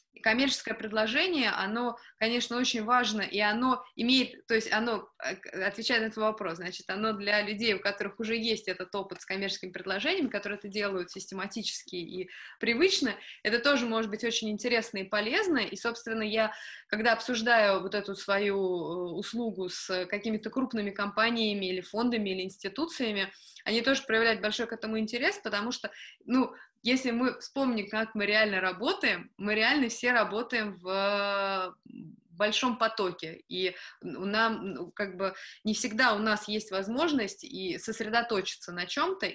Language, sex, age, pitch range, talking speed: Russian, female, 20-39, 195-245 Hz, 150 wpm